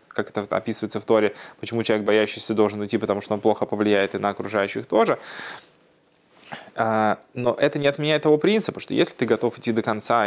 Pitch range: 105-125 Hz